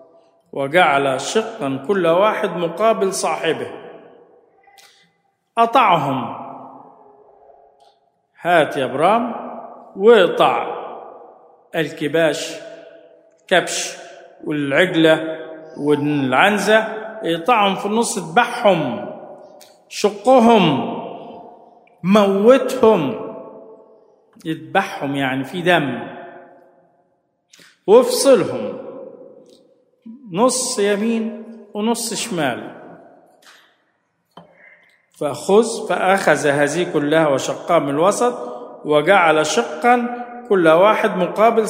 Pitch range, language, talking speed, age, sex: 155-230 Hz, Arabic, 60 wpm, 50-69, male